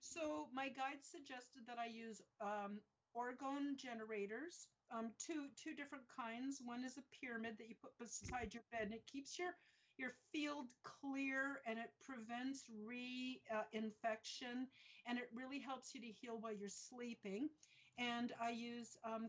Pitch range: 210-255 Hz